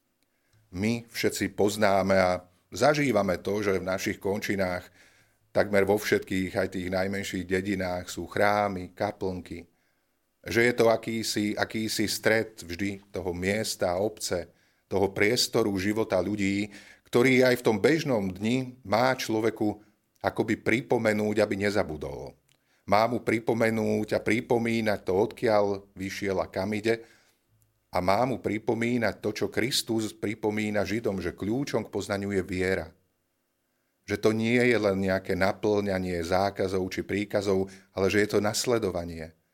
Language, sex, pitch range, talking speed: Slovak, male, 100-115 Hz, 135 wpm